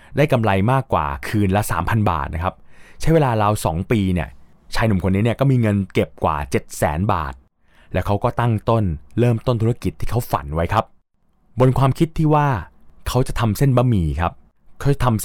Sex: male